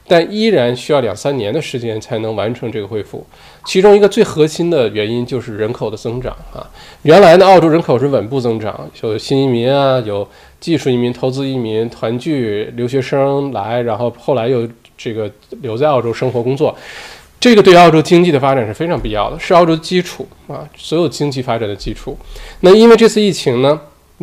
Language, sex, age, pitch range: Chinese, male, 20-39, 115-155 Hz